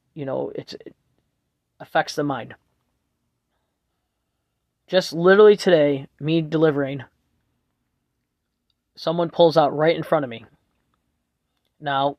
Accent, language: American, English